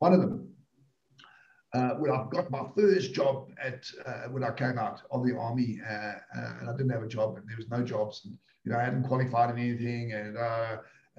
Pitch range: 115-135 Hz